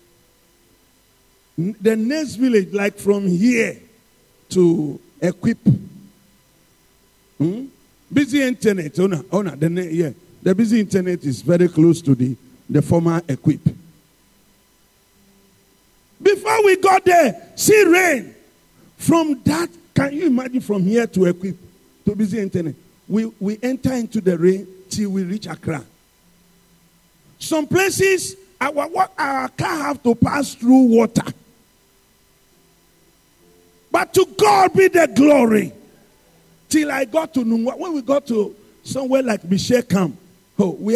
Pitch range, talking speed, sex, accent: 185-275 Hz, 125 wpm, male, Nigerian